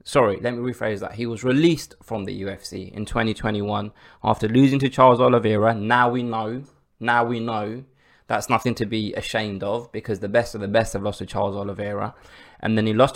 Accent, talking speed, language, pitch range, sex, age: British, 205 wpm, English, 100-120 Hz, male, 20-39